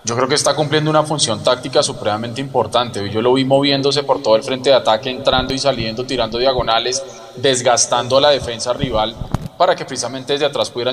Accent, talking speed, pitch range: Colombian, 190 wpm, 115-145 Hz